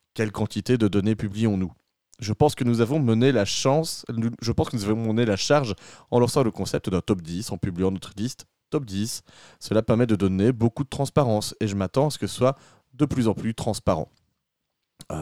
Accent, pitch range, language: French, 105-130 Hz, French